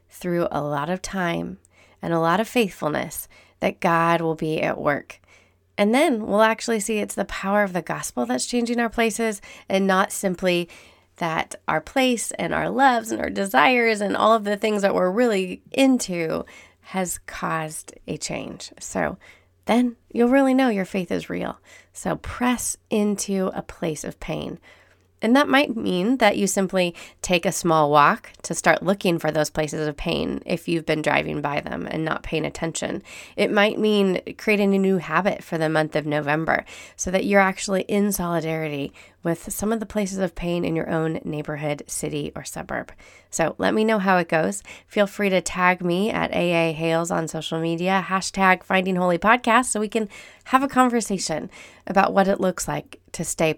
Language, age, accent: English, 30-49, American